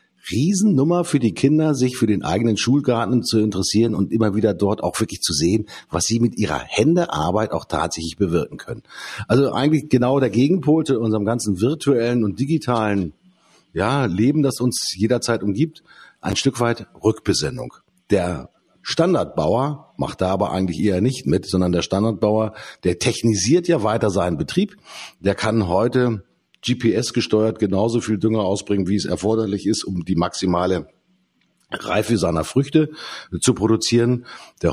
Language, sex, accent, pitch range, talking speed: German, male, German, 90-125 Hz, 150 wpm